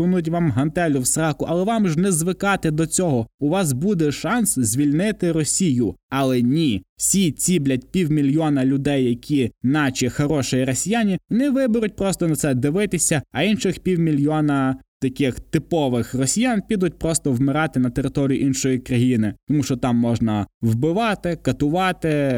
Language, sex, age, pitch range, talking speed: Ukrainian, male, 20-39, 130-165 Hz, 145 wpm